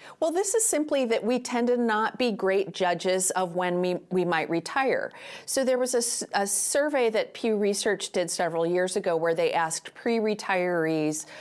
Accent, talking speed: American, 185 wpm